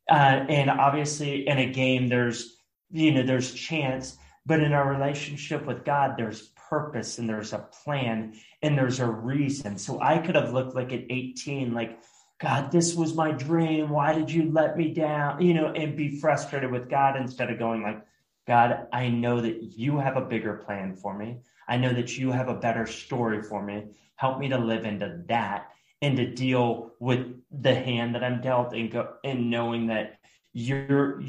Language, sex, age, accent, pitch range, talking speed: English, male, 30-49, American, 110-140 Hz, 190 wpm